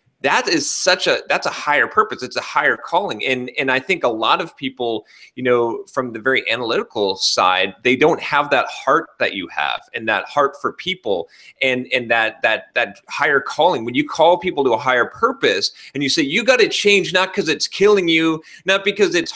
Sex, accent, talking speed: male, American, 215 wpm